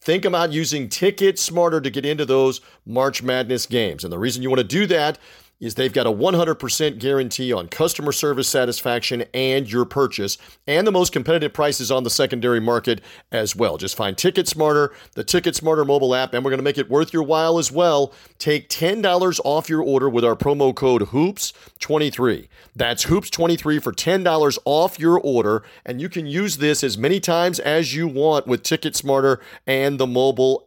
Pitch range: 130-165 Hz